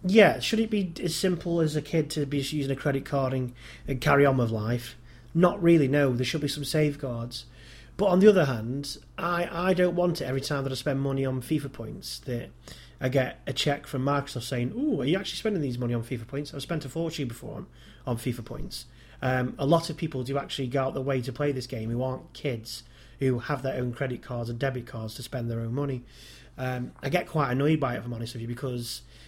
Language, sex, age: English, male, 30-49